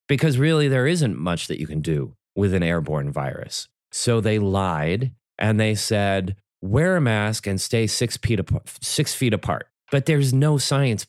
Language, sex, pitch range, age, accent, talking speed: English, male, 90-125 Hz, 30-49, American, 170 wpm